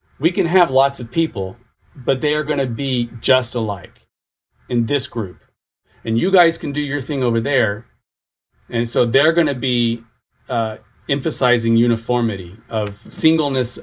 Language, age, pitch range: English, 40-59, 115-145 Hz